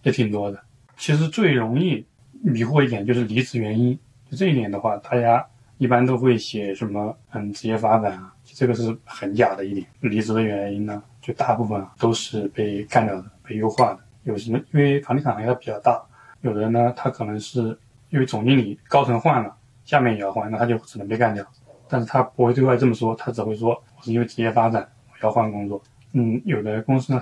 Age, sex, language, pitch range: 20-39, male, Chinese, 110-130 Hz